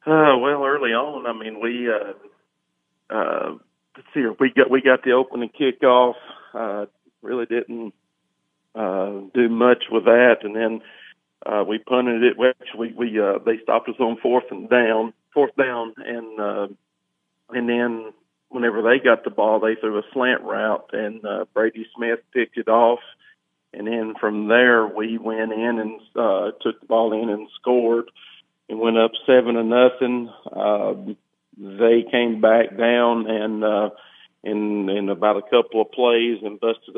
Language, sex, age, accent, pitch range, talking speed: English, male, 40-59, American, 110-120 Hz, 165 wpm